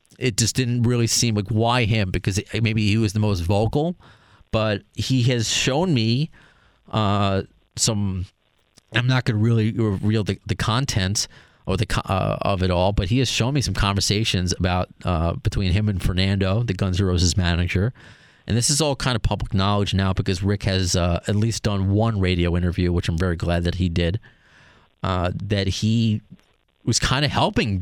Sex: male